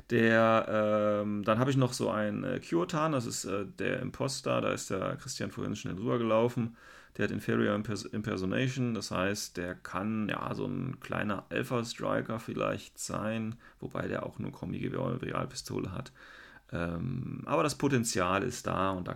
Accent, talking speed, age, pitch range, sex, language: German, 170 wpm, 30-49, 95-125 Hz, male, German